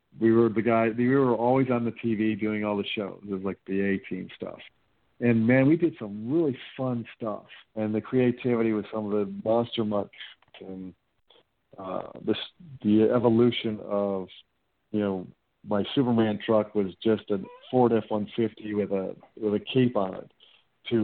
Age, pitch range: 50-69, 100-120 Hz